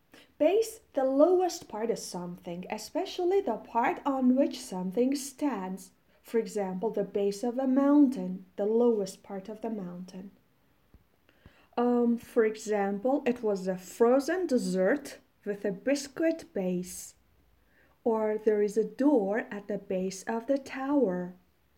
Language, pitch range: Persian, 200-275 Hz